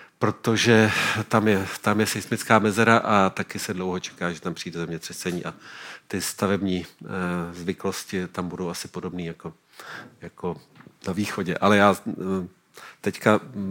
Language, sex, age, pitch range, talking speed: Czech, male, 50-69, 90-110 Hz, 140 wpm